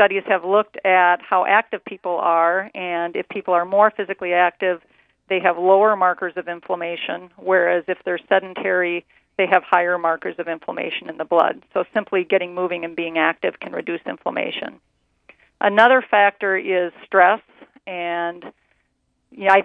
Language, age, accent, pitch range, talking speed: English, 40-59, American, 180-205 Hz, 155 wpm